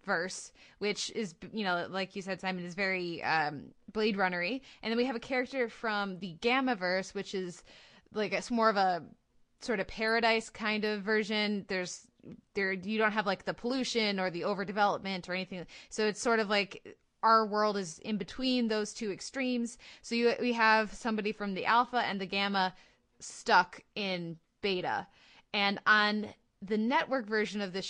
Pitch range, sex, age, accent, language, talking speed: 190-225 Hz, female, 20-39, American, English, 180 wpm